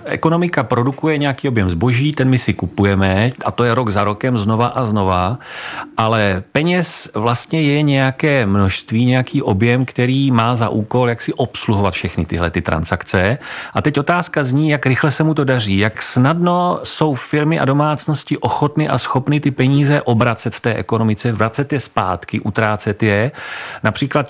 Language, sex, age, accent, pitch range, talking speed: Czech, male, 40-59, native, 105-145 Hz, 170 wpm